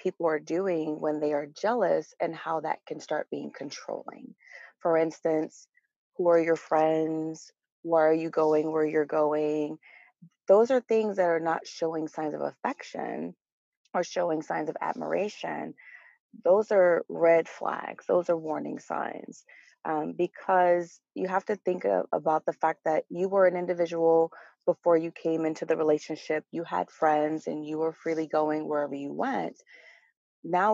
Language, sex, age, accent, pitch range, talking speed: English, female, 30-49, American, 155-180 Hz, 160 wpm